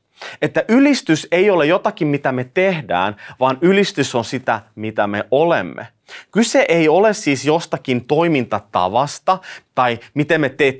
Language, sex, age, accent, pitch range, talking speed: Finnish, male, 30-49, native, 125-185 Hz, 140 wpm